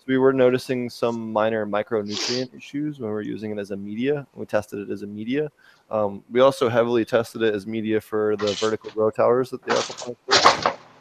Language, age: English, 20-39